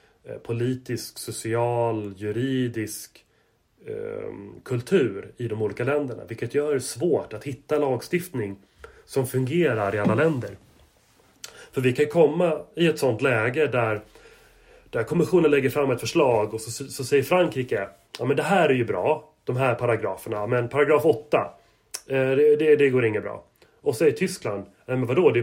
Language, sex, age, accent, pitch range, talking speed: Swedish, male, 30-49, native, 110-155 Hz, 165 wpm